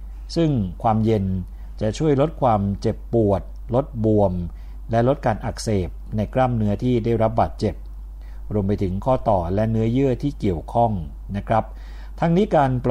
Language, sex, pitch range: Thai, male, 80-120 Hz